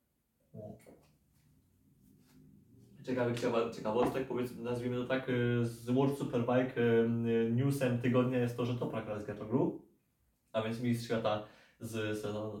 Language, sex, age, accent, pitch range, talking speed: Polish, male, 20-39, native, 110-130 Hz, 110 wpm